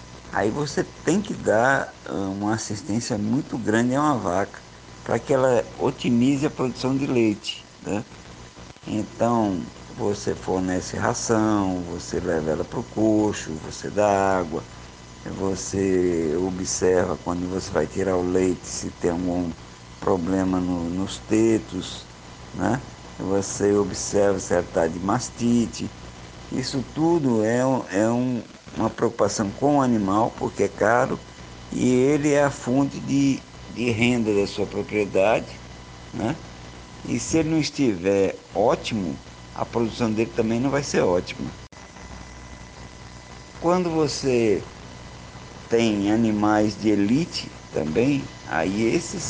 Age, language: 60-79, Portuguese